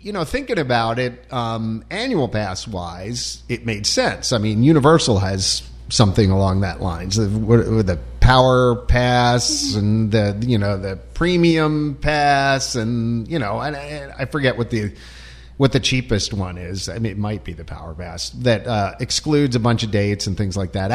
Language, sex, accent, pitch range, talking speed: English, male, American, 100-130 Hz, 185 wpm